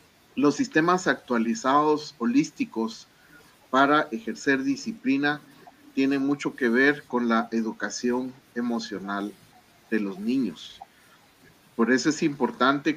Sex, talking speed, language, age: male, 100 wpm, Spanish, 40-59